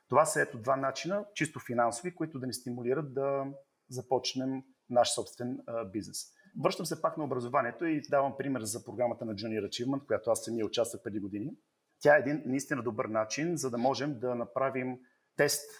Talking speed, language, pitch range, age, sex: 185 wpm, Bulgarian, 110-135 Hz, 40-59, male